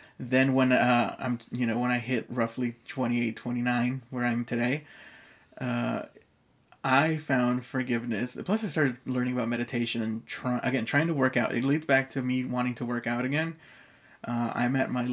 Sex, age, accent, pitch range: male, 20-39, American, 120-135 Hz